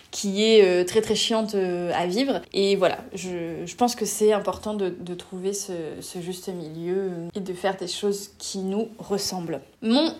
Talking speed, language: 185 wpm, French